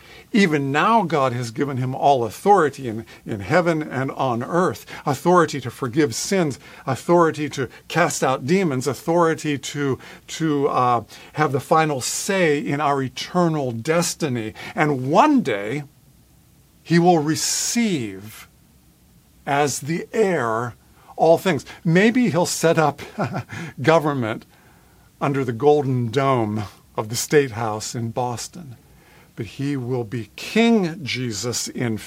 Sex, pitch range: male, 120-165 Hz